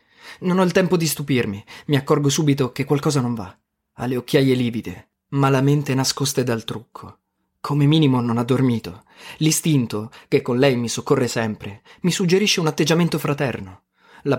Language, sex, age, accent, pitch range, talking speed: Italian, male, 20-39, native, 115-150 Hz, 175 wpm